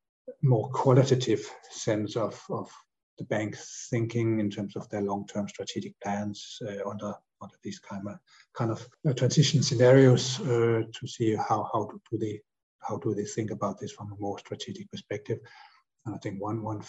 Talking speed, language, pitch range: 180 wpm, English, 100-115 Hz